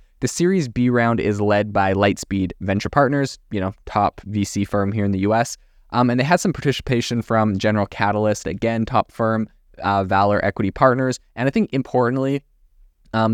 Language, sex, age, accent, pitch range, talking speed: English, male, 20-39, American, 100-125 Hz, 180 wpm